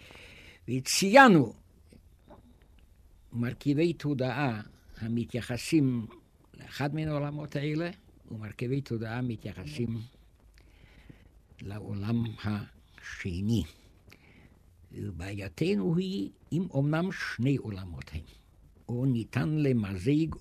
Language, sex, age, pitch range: Hebrew, male, 60-79, 85-140 Hz